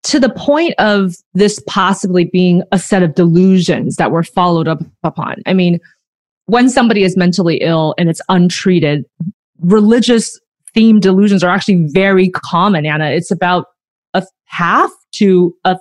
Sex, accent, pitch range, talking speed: female, American, 170-215 Hz, 150 wpm